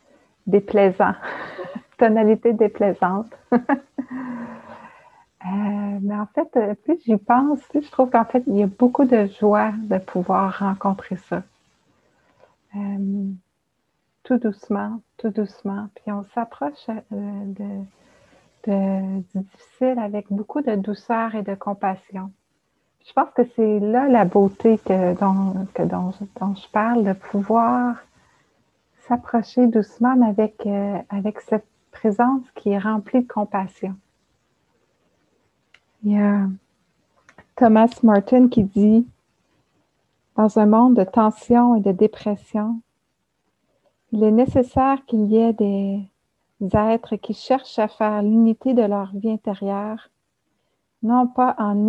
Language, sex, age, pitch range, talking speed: English, female, 60-79, 200-235 Hz, 120 wpm